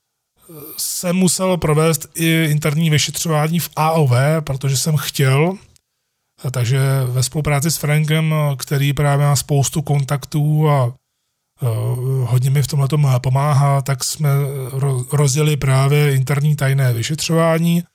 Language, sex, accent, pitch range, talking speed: Czech, male, native, 130-155 Hz, 115 wpm